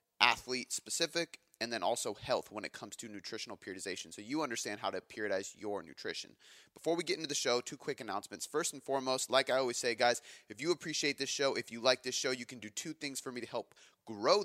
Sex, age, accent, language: male, 30-49, American, English